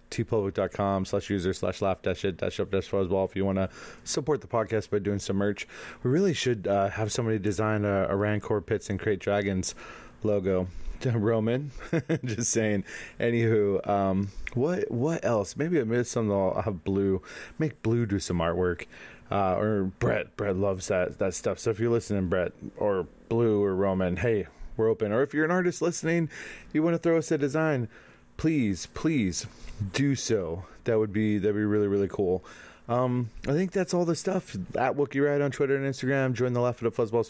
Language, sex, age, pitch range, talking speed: English, male, 30-49, 100-130 Hz, 200 wpm